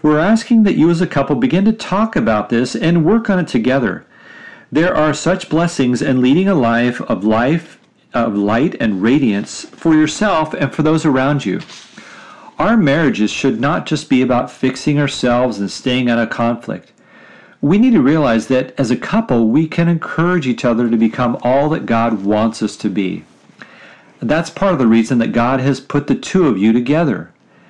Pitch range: 120-165 Hz